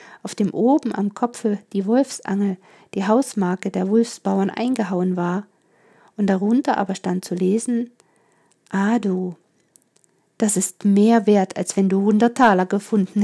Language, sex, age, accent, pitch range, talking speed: German, female, 50-69, German, 190-230 Hz, 135 wpm